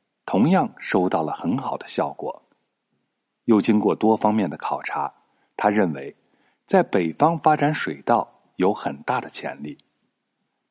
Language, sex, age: Chinese, male, 50-69